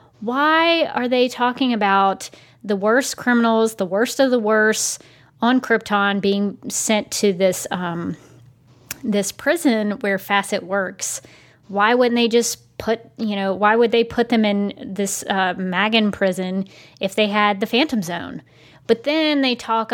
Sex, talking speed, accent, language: female, 155 wpm, American, English